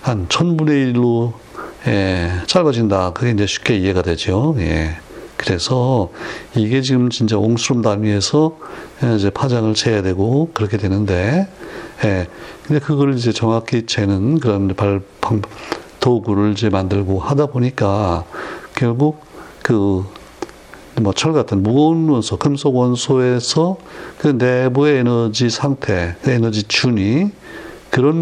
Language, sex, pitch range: Korean, male, 100-140 Hz